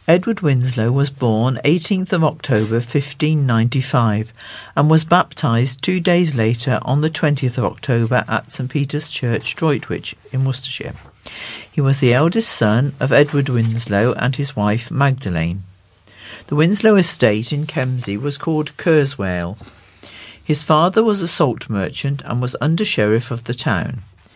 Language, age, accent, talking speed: English, 50-69, British, 150 wpm